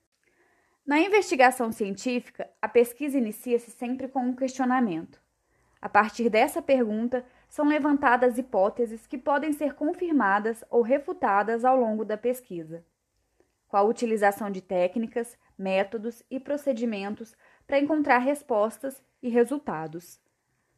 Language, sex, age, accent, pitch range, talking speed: Portuguese, female, 20-39, Brazilian, 220-275 Hz, 115 wpm